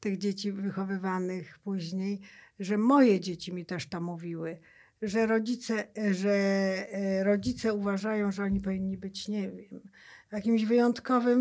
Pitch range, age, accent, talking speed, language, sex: 190-235 Hz, 50-69, native, 125 wpm, Polish, female